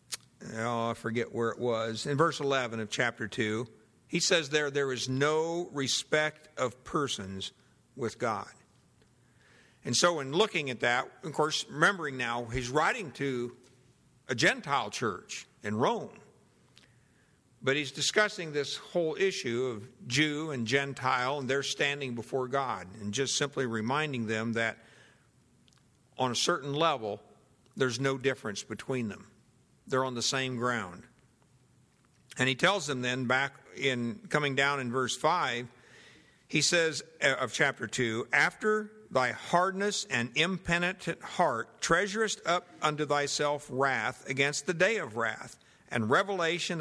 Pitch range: 120-160 Hz